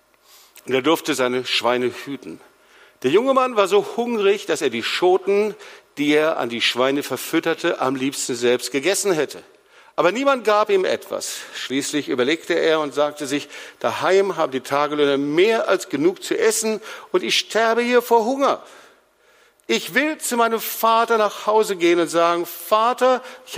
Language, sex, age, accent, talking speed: German, male, 50-69, German, 165 wpm